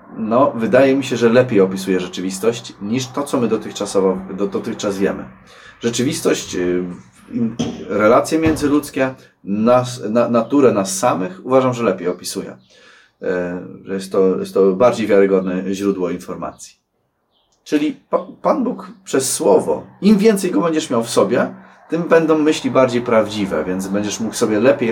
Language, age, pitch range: Polish, 30-49, 100-155 Hz